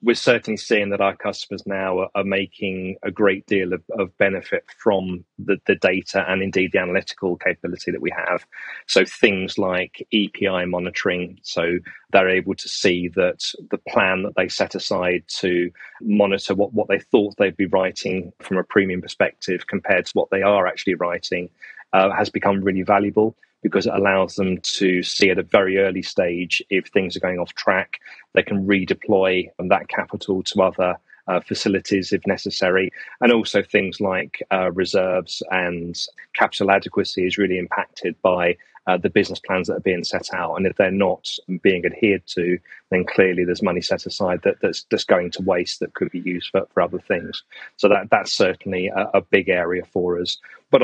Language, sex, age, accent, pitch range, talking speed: English, male, 30-49, British, 90-100 Hz, 180 wpm